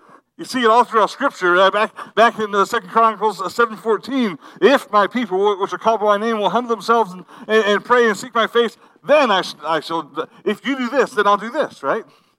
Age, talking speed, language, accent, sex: 50-69, 230 wpm, English, American, male